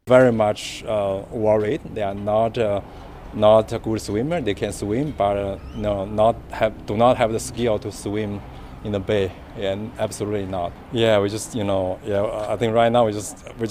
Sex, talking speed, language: male, 205 wpm, Tamil